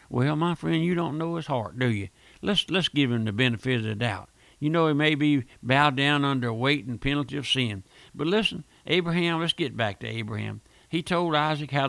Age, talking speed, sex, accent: 60-79, 220 wpm, male, American